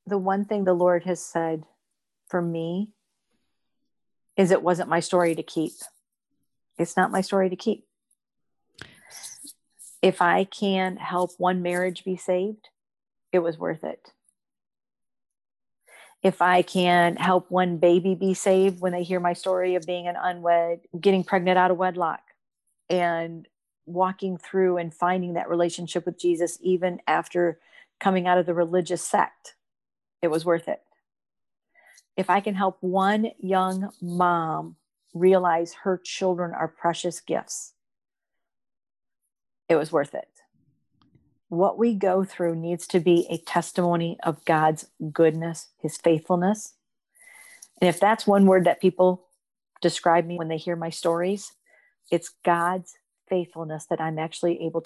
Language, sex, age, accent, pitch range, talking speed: English, female, 40-59, American, 170-190 Hz, 140 wpm